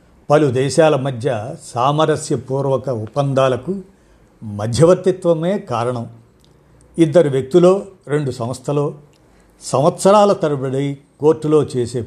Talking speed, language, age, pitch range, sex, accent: 75 wpm, Telugu, 50-69, 120-160 Hz, male, native